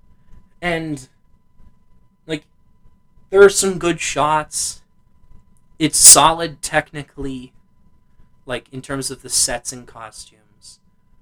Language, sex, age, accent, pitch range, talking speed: English, male, 20-39, American, 125-165 Hz, 95 wpm